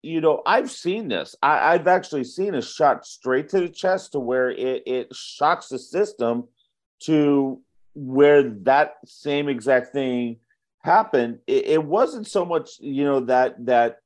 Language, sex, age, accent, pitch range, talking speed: English, male, 50-69, American, 125-165 Hz, 160 wpm